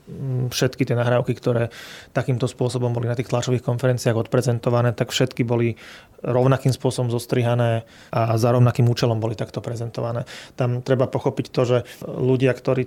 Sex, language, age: male, Slovak, 30-49